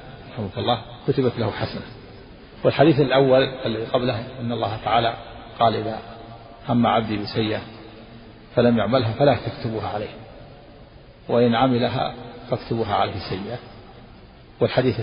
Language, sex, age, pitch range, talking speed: Arabic, male, 50-69, 110-135 Hz, 105 wpm